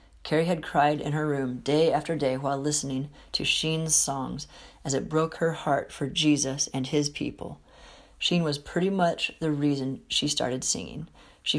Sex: female